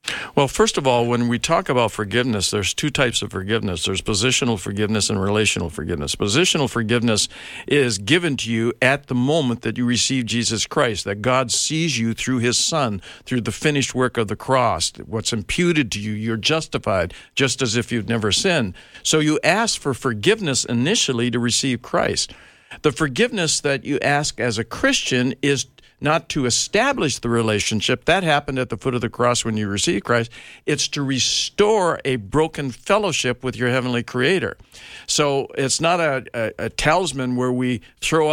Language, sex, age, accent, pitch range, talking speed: English, male, 60-79, American, 115-140 Hz, 180 wpm